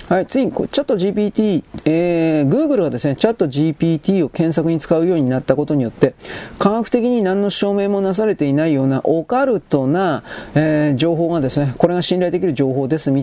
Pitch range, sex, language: 140-185 Hz, male, Japanese